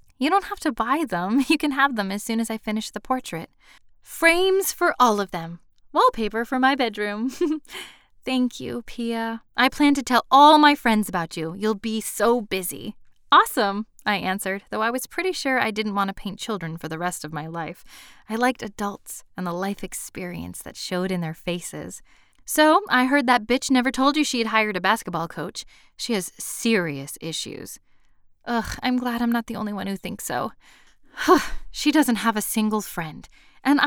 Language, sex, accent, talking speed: English, female, American, 195 wpm